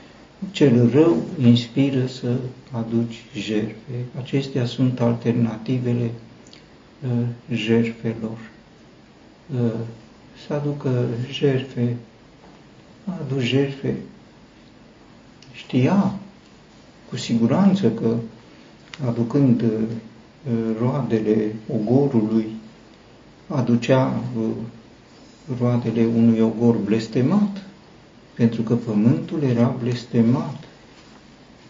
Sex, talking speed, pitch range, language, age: male, 70 wpm, 115-130 Hz, Romanian, 50-69